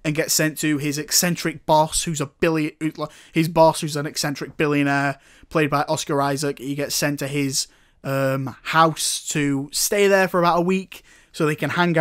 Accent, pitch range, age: British, 140-160 Hz, 20-39